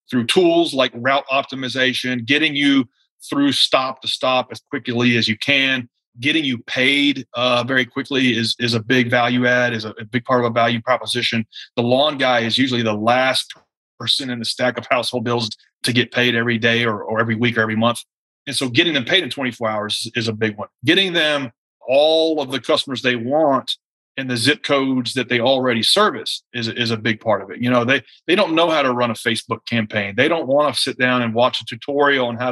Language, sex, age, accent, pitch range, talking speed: English, male, 30-49, American, 115-135 Hz, 220 wpm